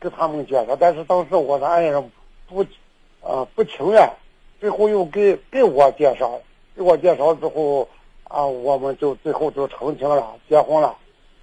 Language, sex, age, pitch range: Chinese, male, 60-79, 140-185 Hz